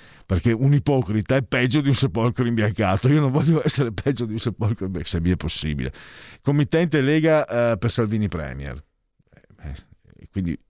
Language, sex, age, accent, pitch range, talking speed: Italian, male, 50-69, native, 100-135 Hz, 175 wpm